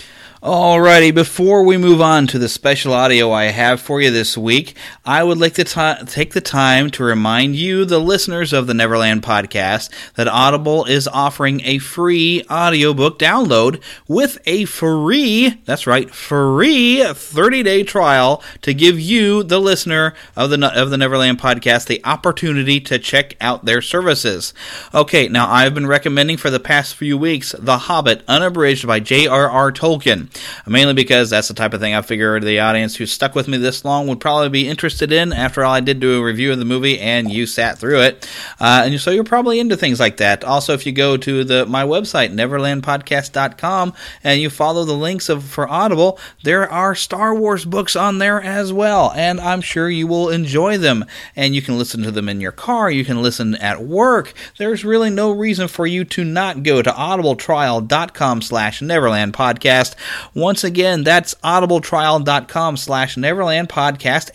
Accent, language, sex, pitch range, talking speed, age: American, English, male, 130-175 Hz, 180 wpm, 30-49